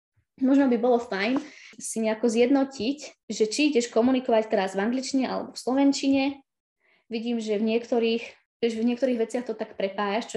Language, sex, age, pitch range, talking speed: Slovak, female, 20-39, 215-245 Hz, 160 wpm